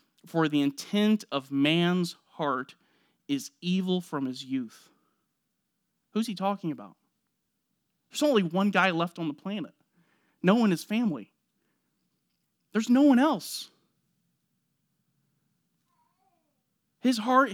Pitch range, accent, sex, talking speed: 175-220 Hz, American, male, 115 wpm